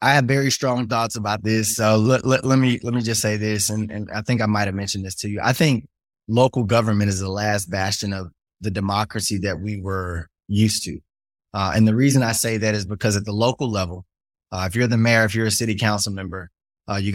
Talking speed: 240 wpm